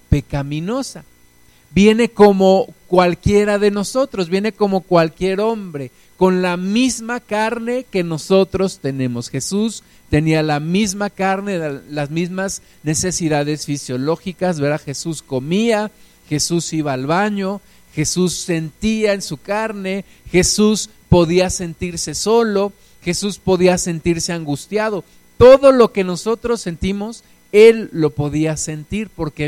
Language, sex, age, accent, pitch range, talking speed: Spanish, male, 50-69, Mexican, 145-205 Hz, 110 wpm